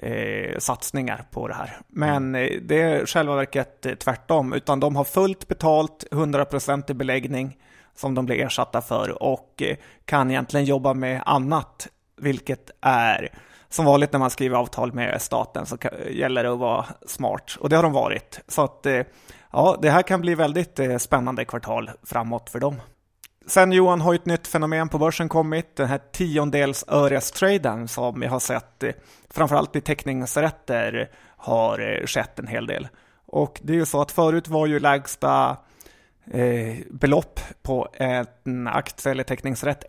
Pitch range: 130-155 Hz